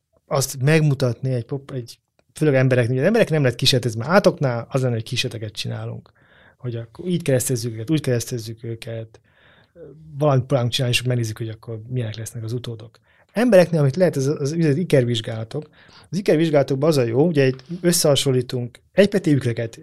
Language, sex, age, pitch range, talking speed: Hungarian, male, 30-49, 120-155 Hz, 170 wpm